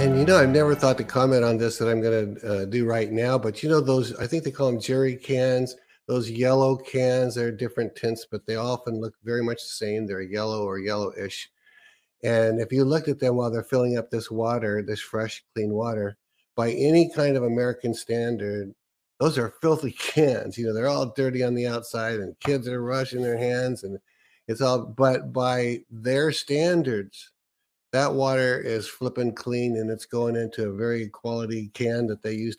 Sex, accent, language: male, American, English